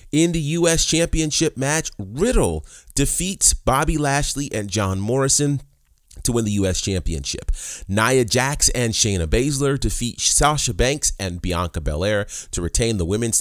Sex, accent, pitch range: male, American, 90-125 Hz